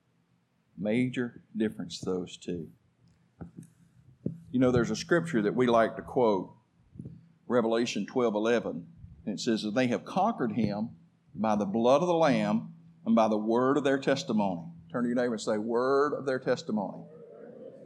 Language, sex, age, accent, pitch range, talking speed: English, male, 50-69, American, 115-165 Hz, 160 wpm